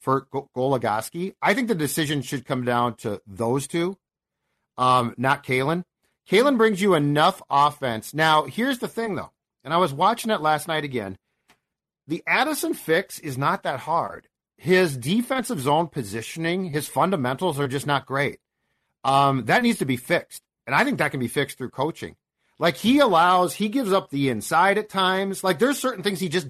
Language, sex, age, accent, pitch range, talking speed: English, male, 40-59, American, 130-185 Hz, 185 wpm